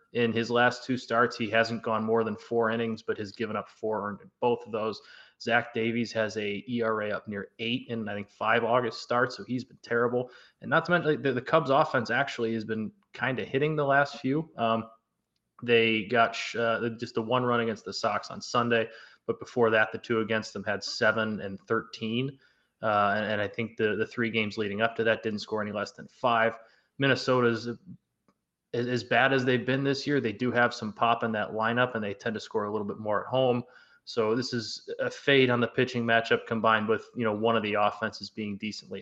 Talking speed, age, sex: 220 wpm, 20-39, male